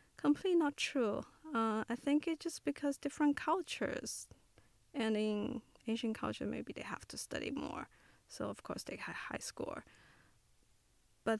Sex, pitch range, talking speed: female, 210-255 Hz, 155 wpm